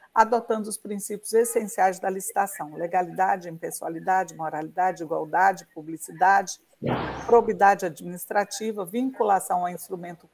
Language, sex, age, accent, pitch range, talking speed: Portuguese, female, 50-69, Brazilian, 185-225 Hz, 95 wpm